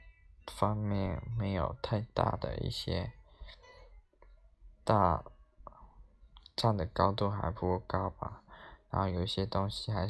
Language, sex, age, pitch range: Chinese, male, 20-39, 90-110 Hz